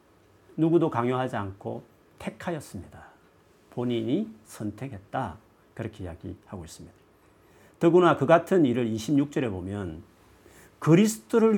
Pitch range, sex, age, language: 100-140 Hz, male, 40-59, Korean